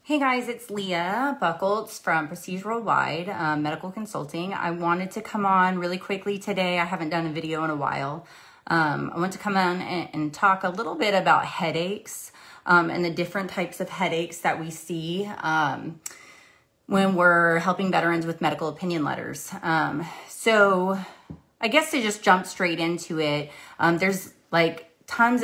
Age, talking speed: 30-49, 175 wpm